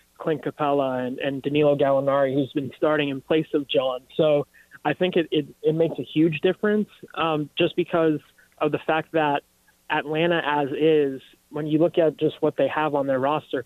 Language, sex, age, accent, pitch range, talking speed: English, male, 20-39, American, 140-160 Hz, 195 wpm